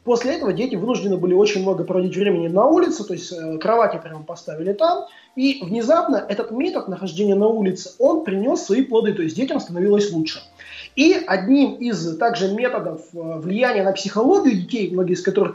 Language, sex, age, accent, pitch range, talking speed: Russian, male, 20-39, native, 185-250 Hz, 175 wpm